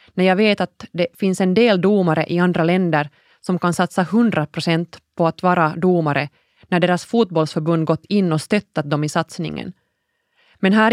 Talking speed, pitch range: 175 wpm, 155-190 Hz